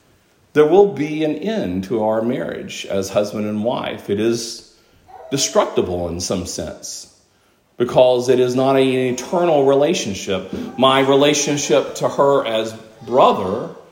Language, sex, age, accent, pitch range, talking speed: English, male, 40-59, American, 115-170 Hz, 135 wpm